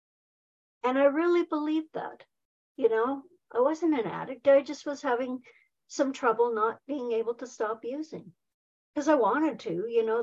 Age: 60-79